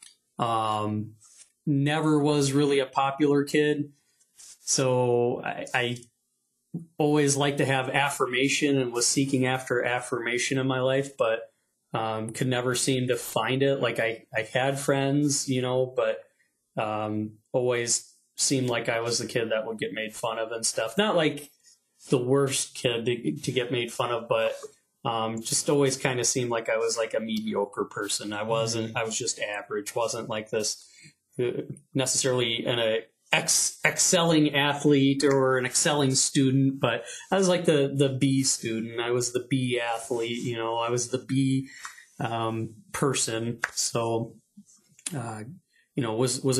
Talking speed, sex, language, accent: 165 wpm, male, English, American